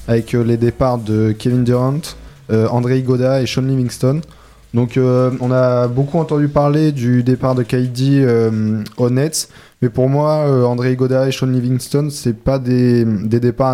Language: French